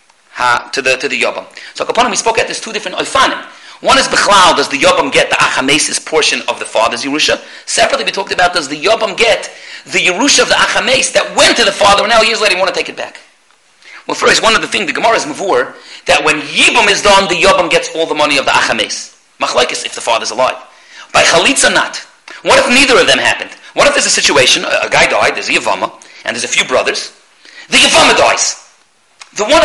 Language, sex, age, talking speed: English, male, 40-59, 235 wpm